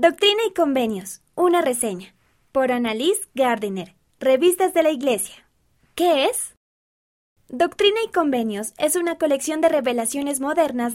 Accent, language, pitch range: Colombian, Spanish, 230-330 Hz